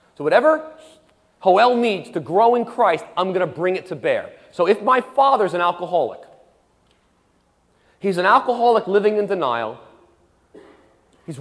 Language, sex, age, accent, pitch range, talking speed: English, male, 40-59, American, 155-225 Hz, 145 wpm